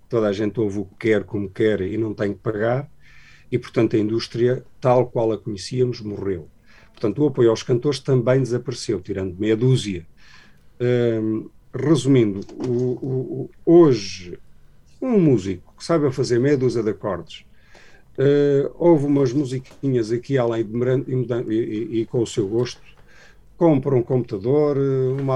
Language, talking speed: Portuguese, 160 wpm